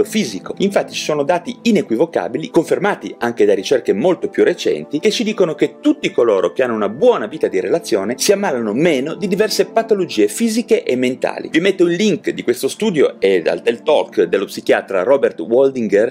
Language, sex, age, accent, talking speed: Italian, male, 30-49, native, 185 wpm